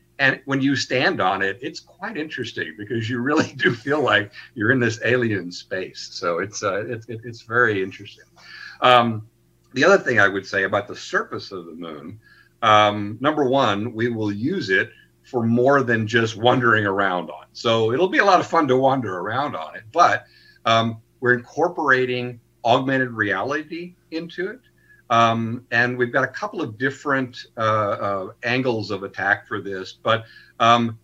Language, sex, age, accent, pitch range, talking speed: English, male, 50-69, American, 105-125 Hz, 175 wpm